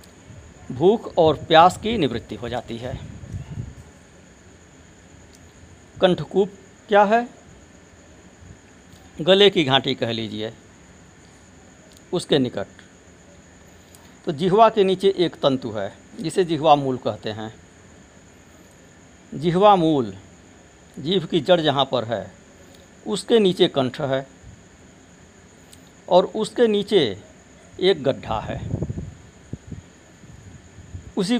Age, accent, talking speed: 60-79, native, 95 wpm